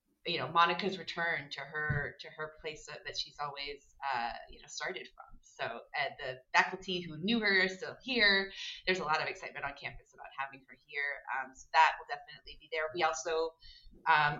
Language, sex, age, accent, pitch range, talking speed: English, female, 30-49, American, 145-190 Hz, 205 wpm